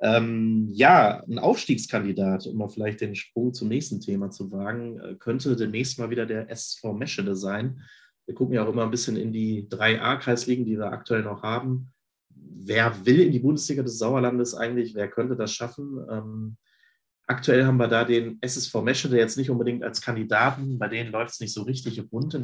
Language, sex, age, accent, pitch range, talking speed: German, male, 30-49, German, 110-125 Hz, 195 wpm